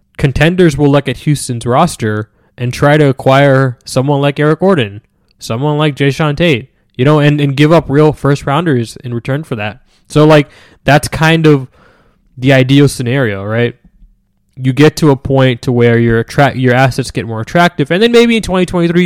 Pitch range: 120-150 Hz